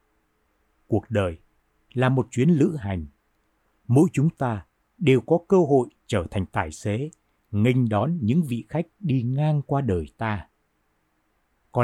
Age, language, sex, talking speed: 60-79, Vietnamese, male, 145 wpm